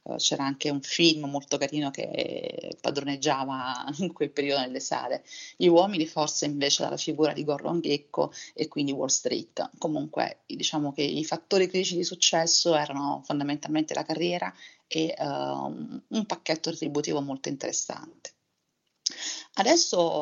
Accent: native